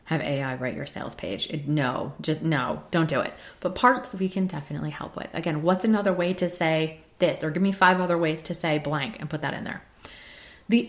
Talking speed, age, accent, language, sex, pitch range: 225 wpm, 20-39, American, English, female, 160-205 Hz